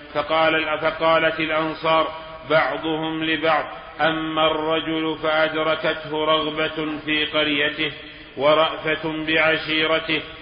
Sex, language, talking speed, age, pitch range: male, Arabic, 70 wpm, 40-59, 155-160 Hz